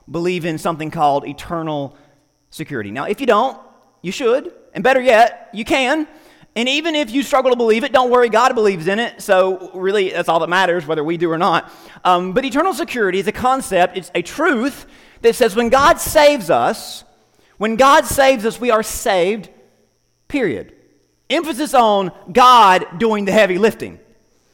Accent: American